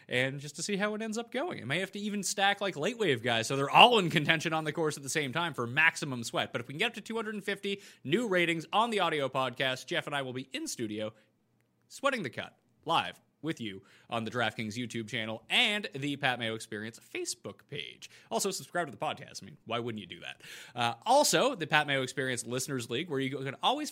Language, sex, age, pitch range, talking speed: English, male, 30-49, 125-195 Hz, 240 wpm